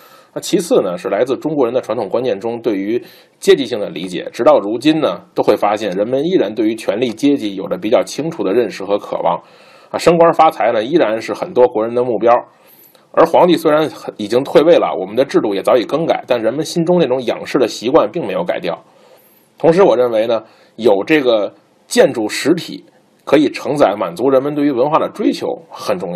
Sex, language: male, Chinese